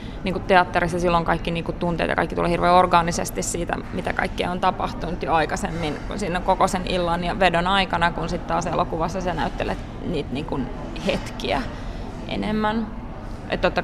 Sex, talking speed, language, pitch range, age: female, 165 wpm, Finnish, 175-205 Hz, 20-39